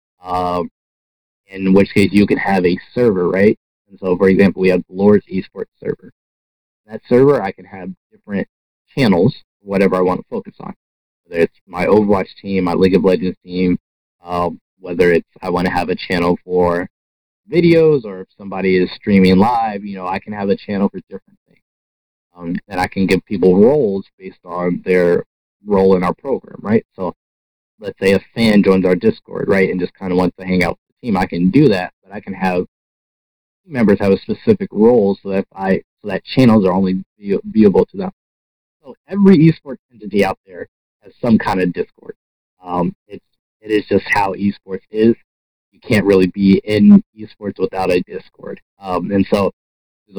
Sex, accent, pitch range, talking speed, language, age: male, American, 90-100 Hz, 195 wpm, English, 30-49